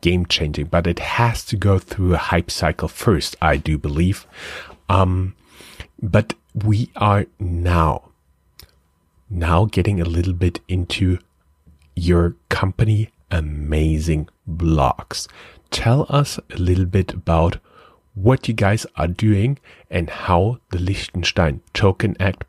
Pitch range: 85-105 Hz